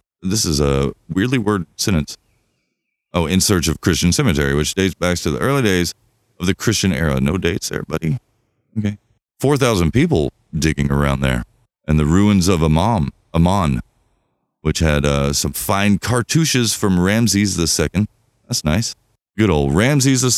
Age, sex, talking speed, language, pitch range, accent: 30-49, male, 155 wpm, English, 80-115 Hz, American